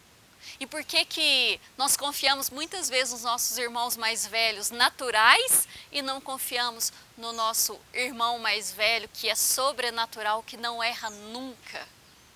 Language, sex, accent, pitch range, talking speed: Portuguese, female, Brazilian, 235-310 Hz, 140 wpm